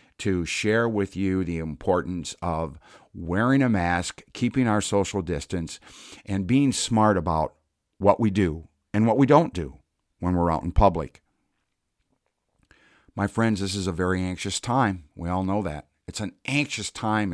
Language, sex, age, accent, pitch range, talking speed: English, male, 50-69, American, 85-110 Hz, 165 wpm